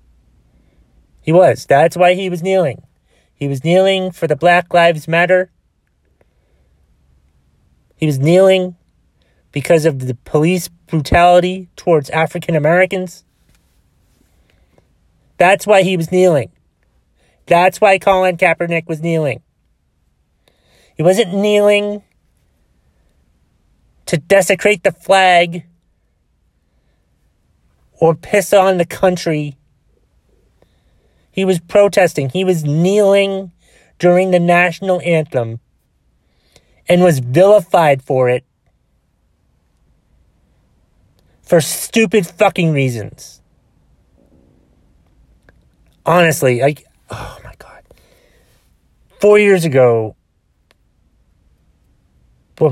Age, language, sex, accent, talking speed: 30-49, English, male, American, 90 wpm